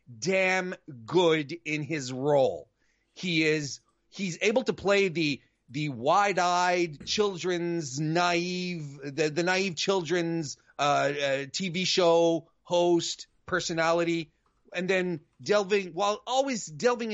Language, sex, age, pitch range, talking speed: English, male, 30-49, 160-220 Hz, 110 wpm